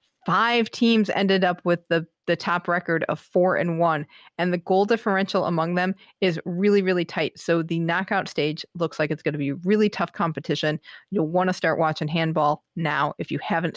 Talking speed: 200 wpm